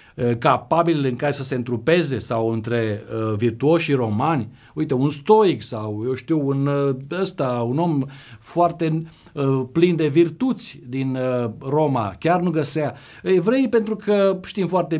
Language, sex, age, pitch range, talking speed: Romanian, male, 50-69, 125-170 Hz, 135 wpm